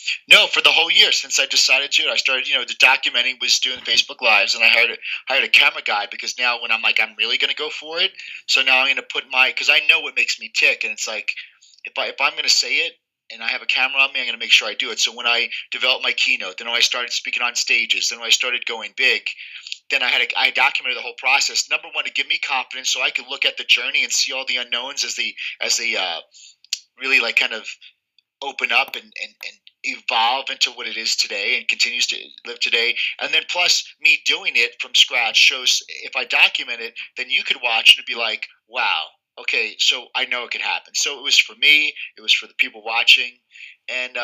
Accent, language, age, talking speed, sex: American, English, 30-49, 260 wpm, male